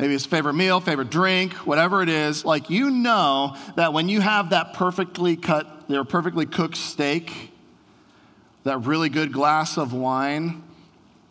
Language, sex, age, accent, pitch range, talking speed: English, male, 40-59, American, 145-185 Hz, 155 wpm